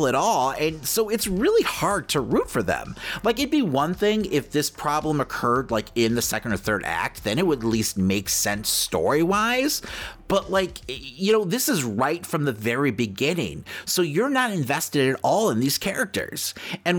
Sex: male